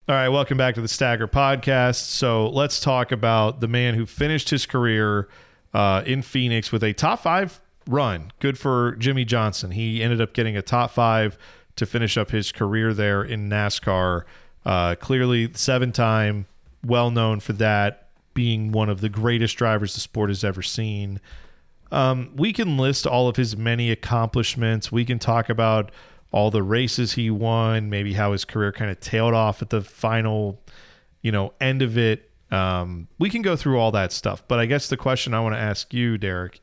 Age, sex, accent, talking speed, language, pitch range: 40-59, male, American, 190 wpm, English, 105-125 Hz